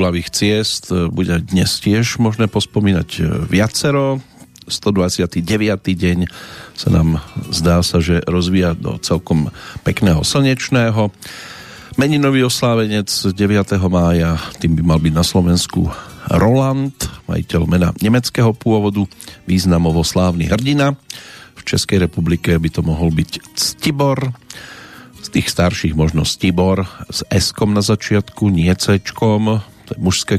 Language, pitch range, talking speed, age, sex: Slovak, 90-110 Hz, 115 wpm, 40-59, male